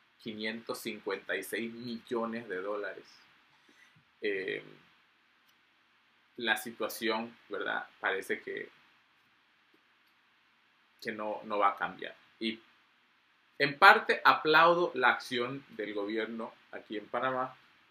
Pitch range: 110-170 Hz